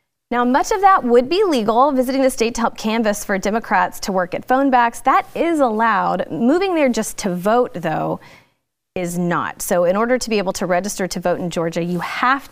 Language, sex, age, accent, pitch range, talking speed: English, female, 30-49, American, 185-260 Hz, 215 wpm